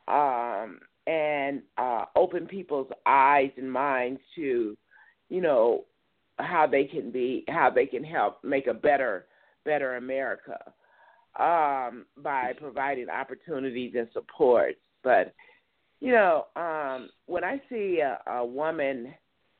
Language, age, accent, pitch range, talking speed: English, 50-69, American, 125-185 Hz, 120 wpm